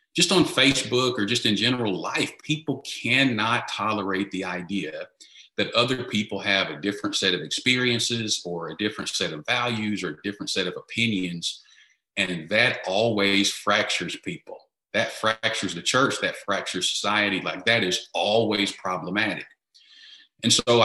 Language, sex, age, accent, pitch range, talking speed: English, male, 40-59, American, 95-115 Hz, 155 wpm